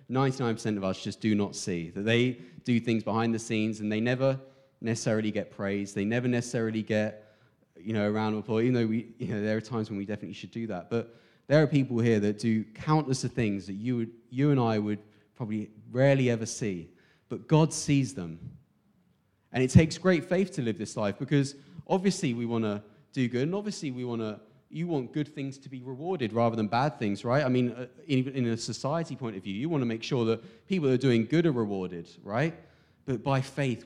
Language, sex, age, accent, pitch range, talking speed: English, male, 30-49, British, 105-130 Hz, 220 wpm